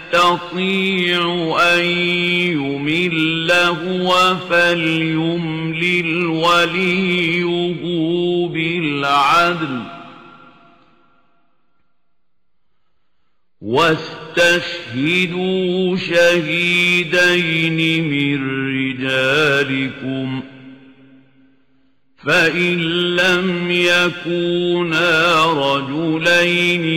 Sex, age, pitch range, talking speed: male, 50-69, 160-175 Hz, 35 wpm